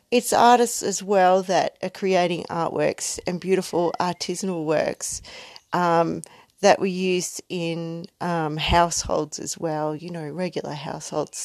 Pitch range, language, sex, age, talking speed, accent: 170-195 Hz, English, female, 40-59, 130 wpm, Australian